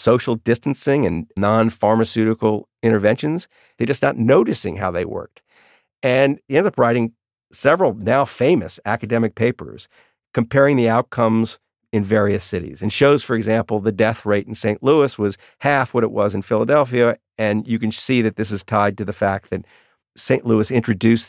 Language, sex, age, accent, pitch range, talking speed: English, male, 50-69, American, 105-130 Hz, 170 wpm